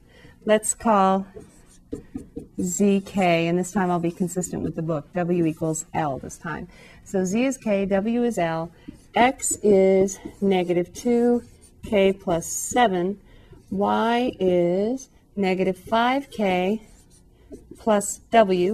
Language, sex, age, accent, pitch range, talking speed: English, female, 40-59, American, 170-205 Hz, 115 wpm